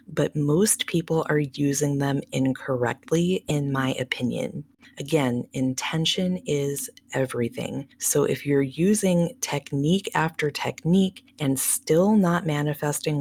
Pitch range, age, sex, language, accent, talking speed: 140-185 Hz, 20-39, female, English, American, 115 wpm